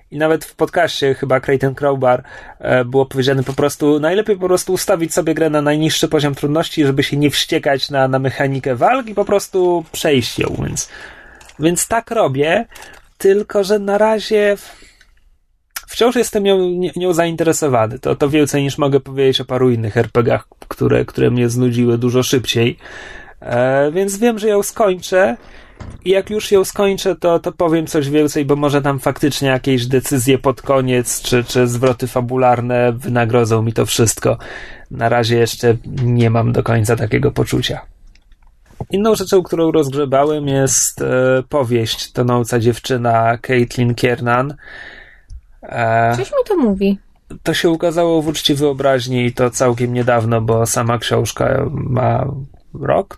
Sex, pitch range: male, 125-170 Hz